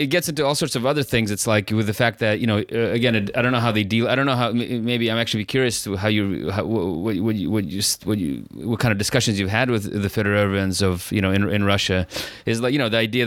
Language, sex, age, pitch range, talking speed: English, male, 30-49, 100-115 Hz, 285 wpm